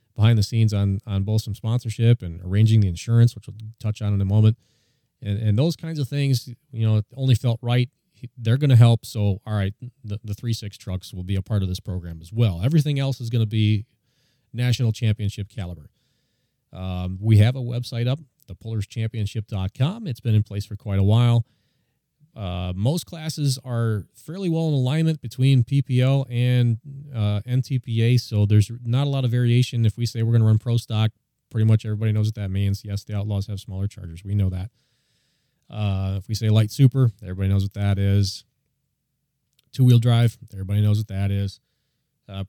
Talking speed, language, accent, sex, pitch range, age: 200 wpm, English, American, male, 105-125 Hz, 30-49